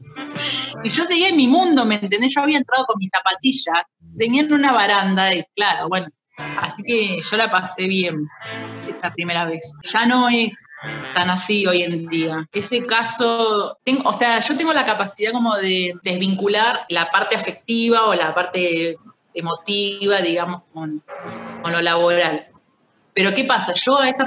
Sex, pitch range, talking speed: female, 175-230 Hz, 165 wpm